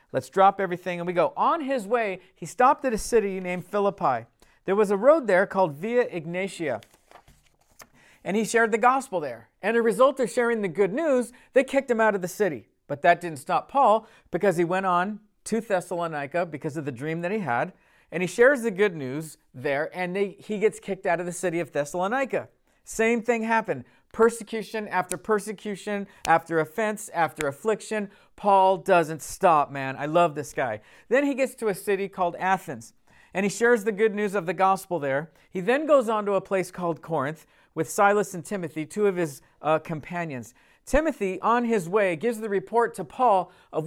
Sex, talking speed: male, 200 wpm